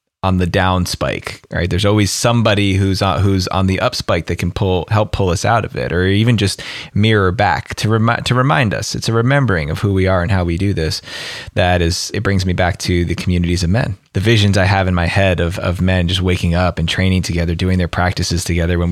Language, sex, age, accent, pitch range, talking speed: English, male, 20-39, American, 90-115 Hz, 245 wpm